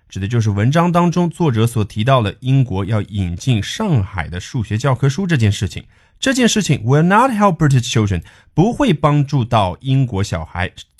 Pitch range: 105-165 Hz